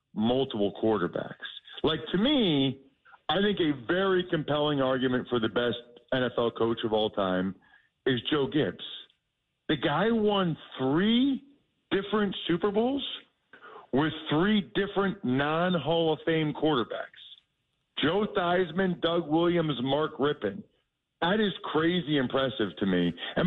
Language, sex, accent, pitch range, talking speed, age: English, male, American, 130-180 Hz, 125 wpm, 50-69